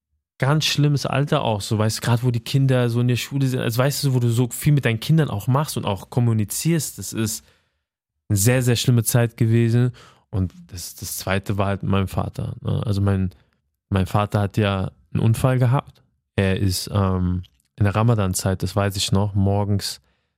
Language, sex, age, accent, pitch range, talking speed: German, male, 20-39, German, 100-120 Hz, 195 wpm